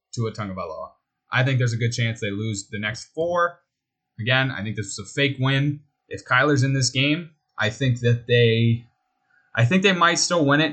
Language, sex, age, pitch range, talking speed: English, male, 20-39, 105-130 Hz, 220 wpm